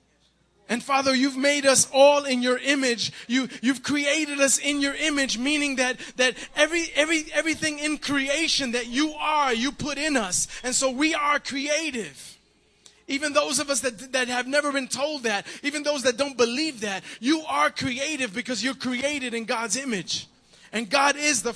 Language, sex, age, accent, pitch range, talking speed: English, male, 20-39, American, 240-285 Hz, 185 wpm